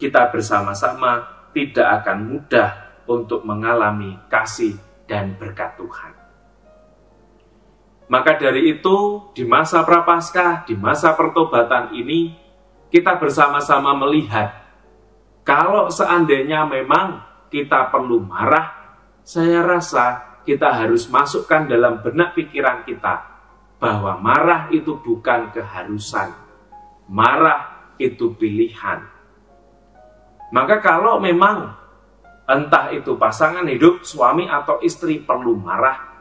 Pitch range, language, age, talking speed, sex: 110-180 Hz, English, 30-49, 100 wpm, male